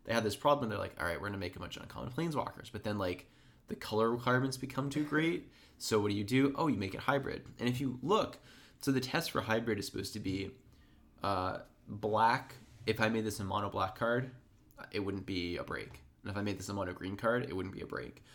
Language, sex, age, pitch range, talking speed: English, male, 20-39, 95-120 Hz, 255 wpm